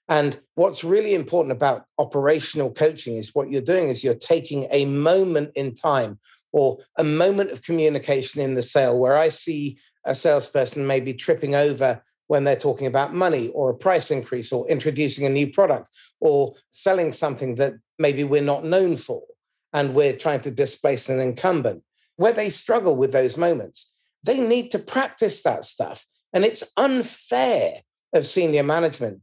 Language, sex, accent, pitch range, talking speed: English, male, British, 135-185 Hz, 170 wpm